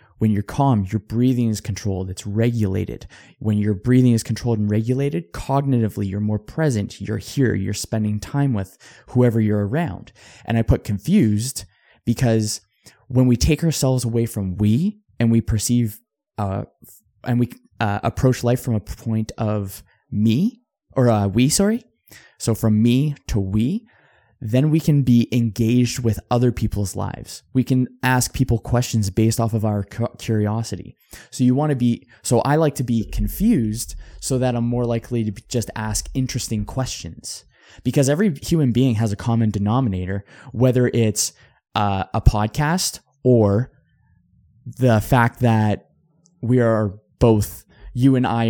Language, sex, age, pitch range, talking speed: English, male, 20-39, 105-125 Hz, 160 wpm